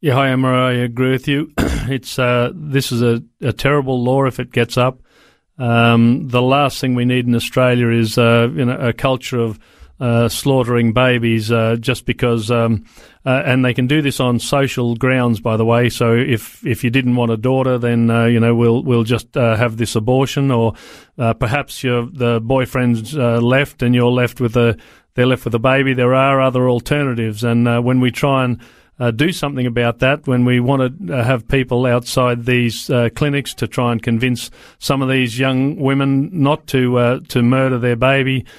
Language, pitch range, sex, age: English, 120-130 Hz, male, 40-59